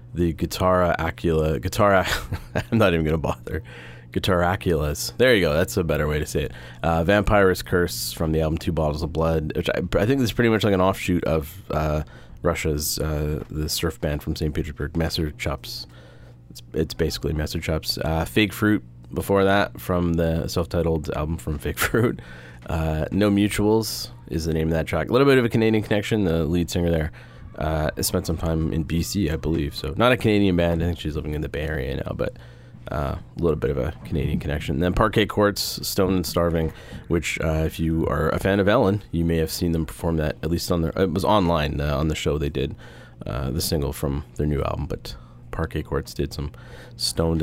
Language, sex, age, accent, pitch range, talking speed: English, male, 30-49, American, 75-95 Hz, 220 wpm